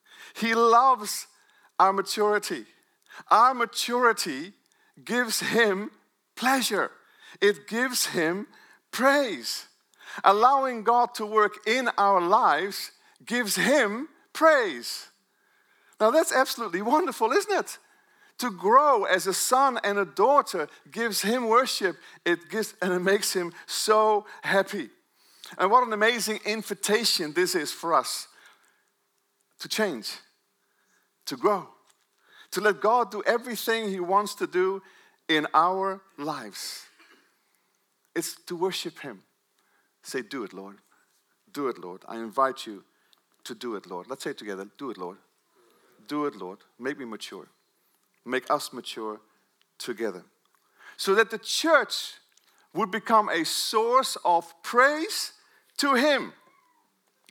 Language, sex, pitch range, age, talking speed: English, male, 195-295 Hz, 50-69, 125 wpm